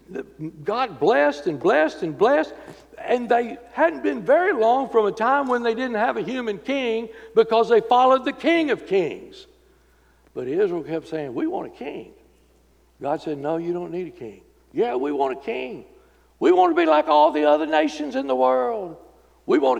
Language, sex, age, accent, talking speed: English, male, 60-79, American, 195 wpm